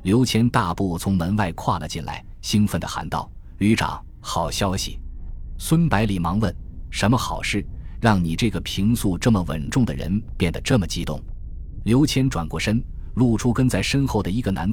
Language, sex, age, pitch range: Chinese, male, 20-39, 80-115 Hz